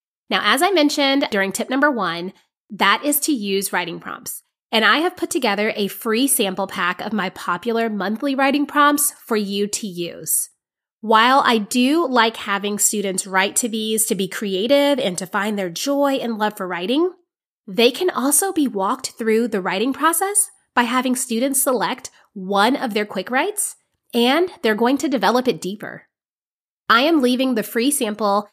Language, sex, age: English, female, 30-49